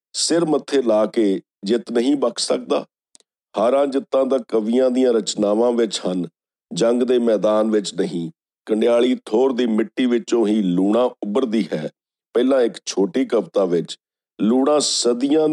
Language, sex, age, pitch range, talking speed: Punjabi, male, 50-69, 110-140 Hz, 145 wpm